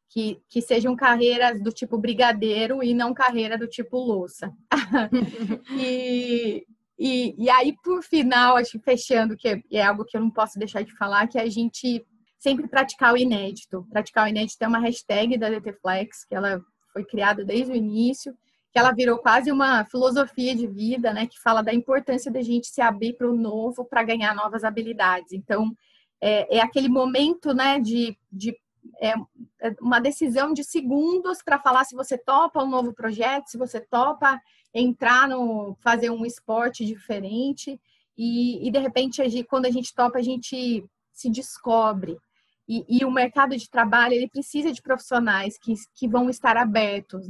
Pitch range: 220-255 Hz